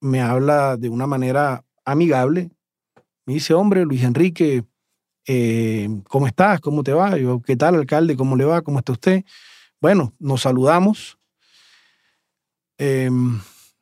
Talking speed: 135 wpm